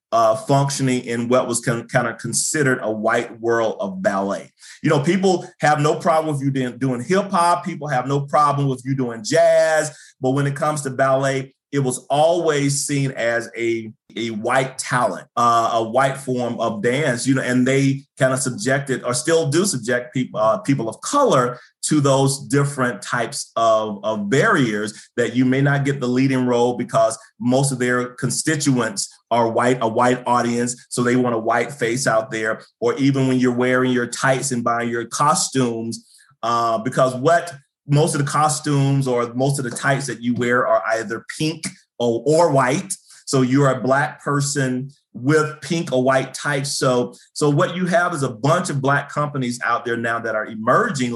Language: English